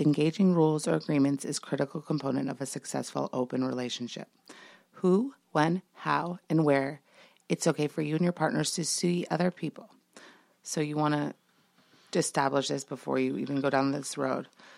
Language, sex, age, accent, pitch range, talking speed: English, female, 30-49, American, 140-165 Hz, 170 wpm